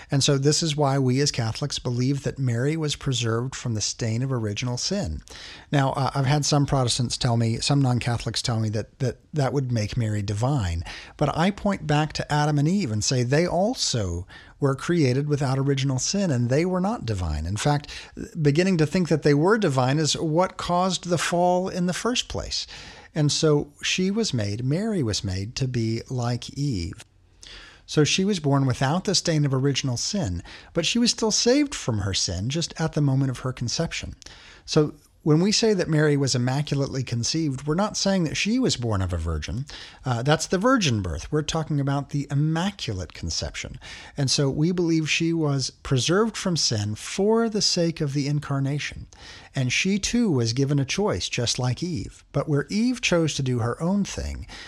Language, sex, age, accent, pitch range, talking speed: English, male, 50-69, American, 120-165 Hz, 195 wpm